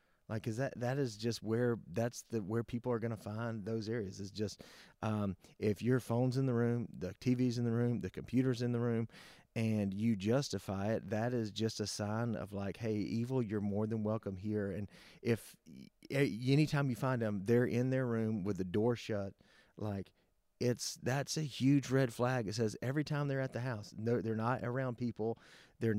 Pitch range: 105-120 Hz